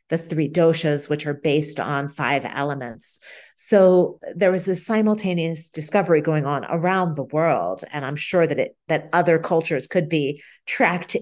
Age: 40-59